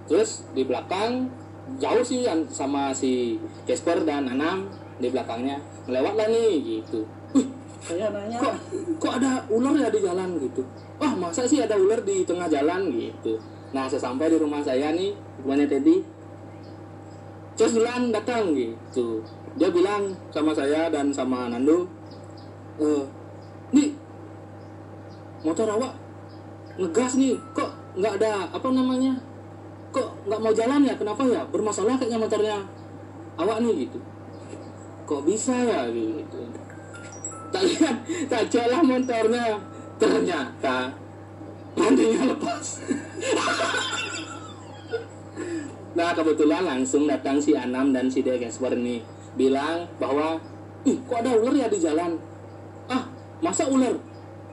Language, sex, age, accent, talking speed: Indonesian, male, 20-39, native, 120 wpm